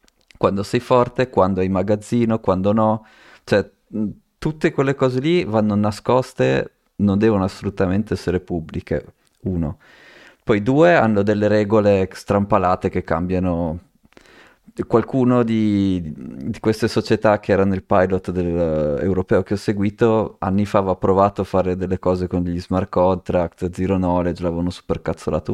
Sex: male